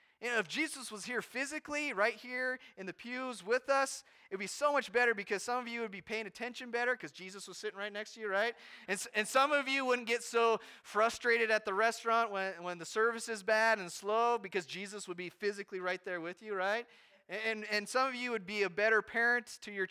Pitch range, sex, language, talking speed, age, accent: 195-235 Hz, male, English, 240 wpm, 30-49, American